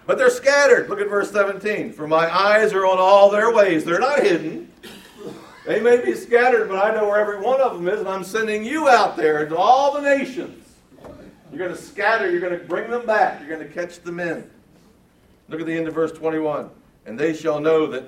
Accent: American